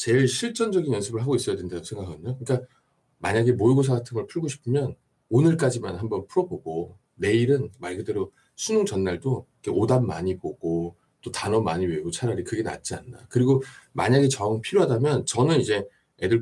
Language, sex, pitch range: Korean, male, 110-145 Hz